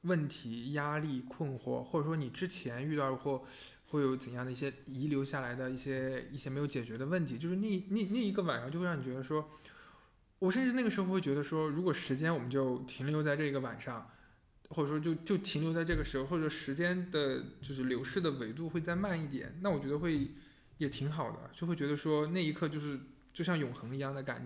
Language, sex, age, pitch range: Chinese, male, 20-39, 135-170 Hz